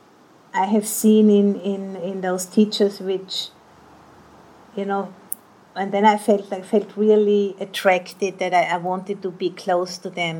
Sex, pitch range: female, 185-205 Hz